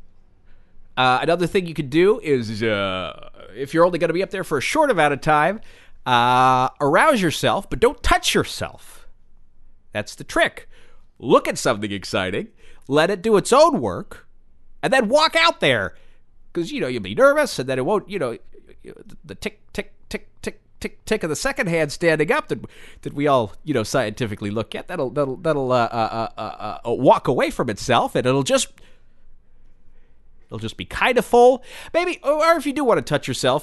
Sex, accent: male, American